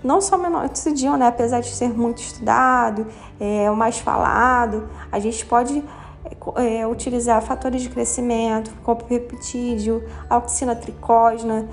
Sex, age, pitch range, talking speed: female, 10-29, 215-255 Hz, 135 wpm